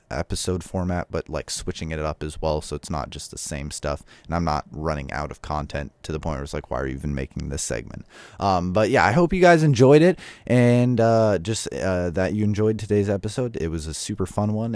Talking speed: 245 wpm